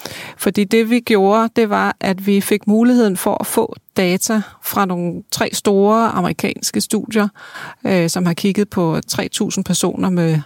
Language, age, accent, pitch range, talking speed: Danish, 30-49, native, 180-215 Hz, 160 wpm